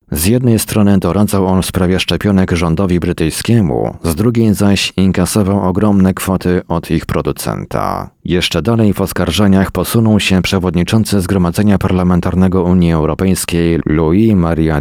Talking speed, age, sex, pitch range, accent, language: 125 wpm, 40-59, male, 85-100 Hz, native, Polish